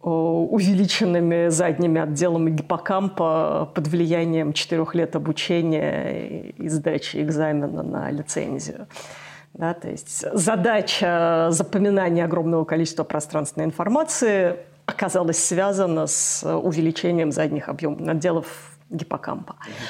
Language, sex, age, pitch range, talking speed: Russian, female, 50-69, 160-210 Hz, 90 wpm